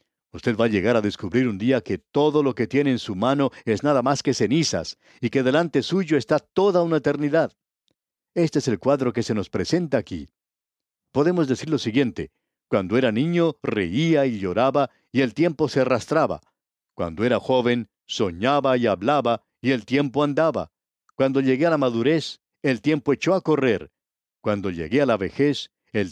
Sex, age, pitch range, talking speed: male, 60-79, 110-145 Hz, 180 wpm